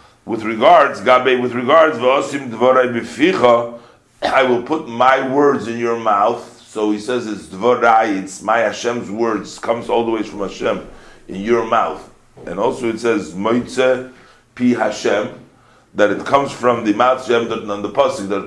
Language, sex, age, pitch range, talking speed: English, male, 50-69, 105-130 Hz, 155 wpm